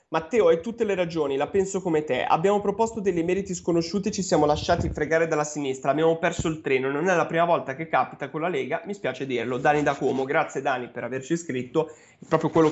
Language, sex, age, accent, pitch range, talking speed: Italian, male, 30-49, native, 145-185 Hz, 225 wpm